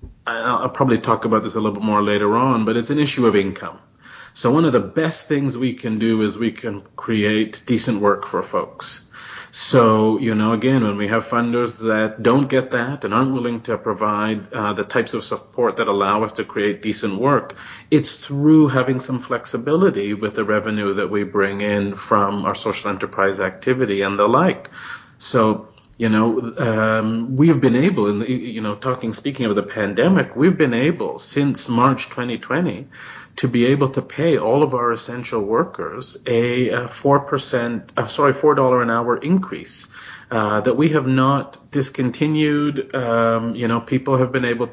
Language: English